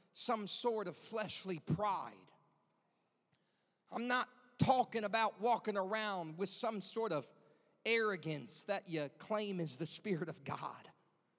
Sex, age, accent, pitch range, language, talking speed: male, 40-59, American, 175-230 Hz, English, 125 wpm